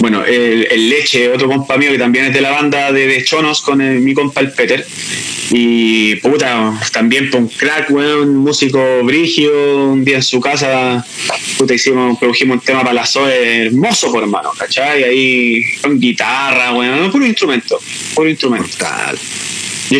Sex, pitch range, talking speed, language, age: male, 125-155 Hz, 180 wpm, Spanish, 20-39